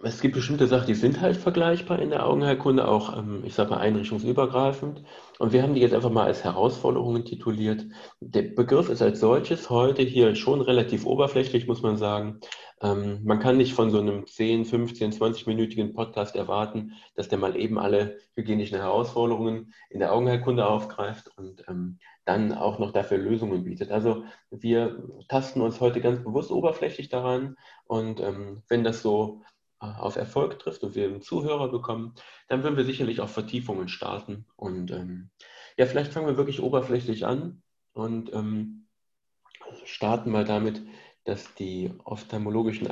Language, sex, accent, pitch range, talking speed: German, male, German, 105-125 Hz, 160 wpm